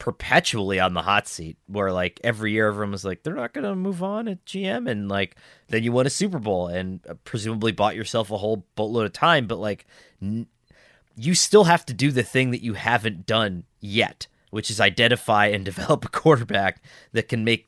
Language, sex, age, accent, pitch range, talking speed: English, male, 30-49, American, 95-125 Hz, 205 wpm